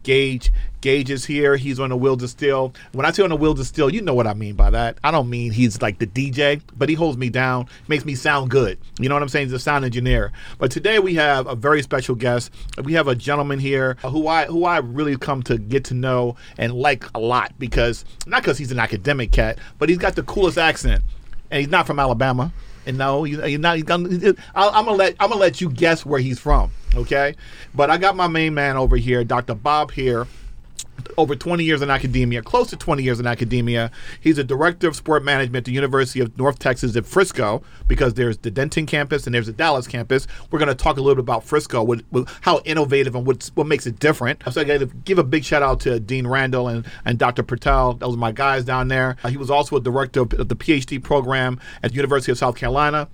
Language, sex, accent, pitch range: English, male, American, 125-150 Hz